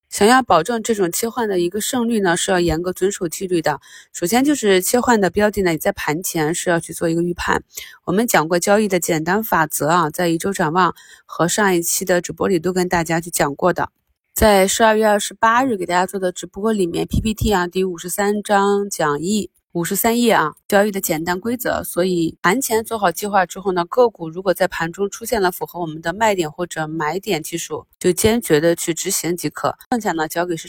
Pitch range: 165-200 Hz